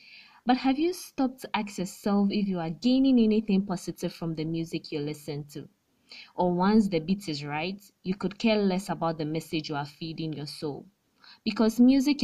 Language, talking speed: English, 190 wpm